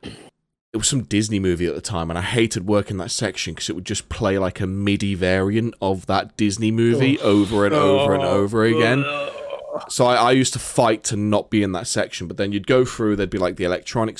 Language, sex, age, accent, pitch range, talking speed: English, male, 20-39, British, 95-120 Hz, 235 wpm